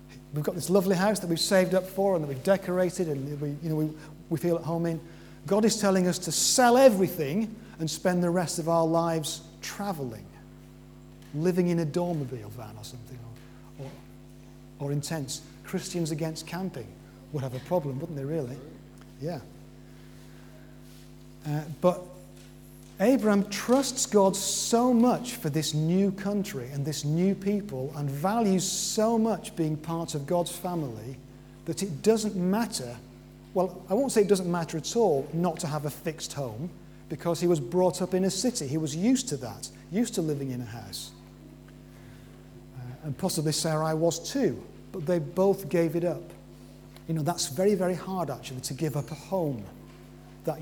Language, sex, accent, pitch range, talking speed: English, male, British, 140-185 Hz, 170 wpm